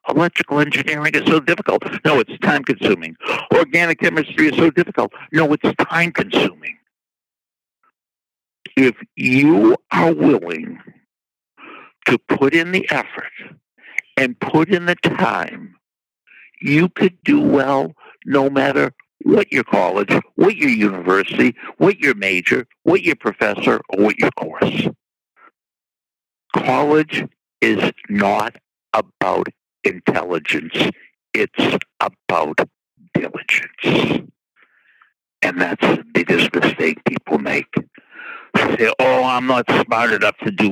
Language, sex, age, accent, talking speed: English, male, 60-79, American, 115 wpm